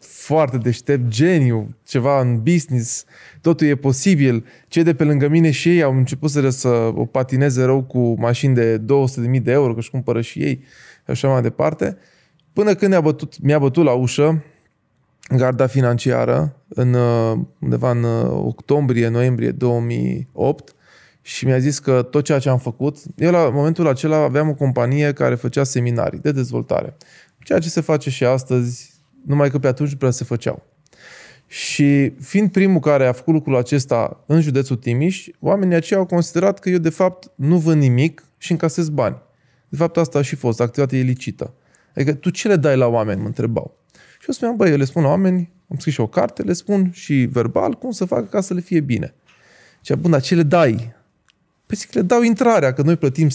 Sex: male